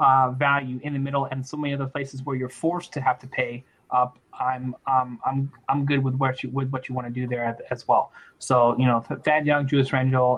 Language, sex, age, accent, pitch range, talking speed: English, male, 20-39, American, 125-140 Hz, 255 wpm